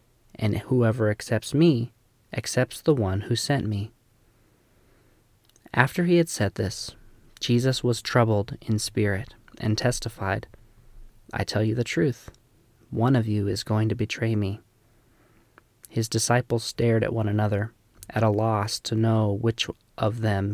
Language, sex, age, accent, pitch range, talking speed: English, male, 20-39, American, 110-120 Hz, 145 wpm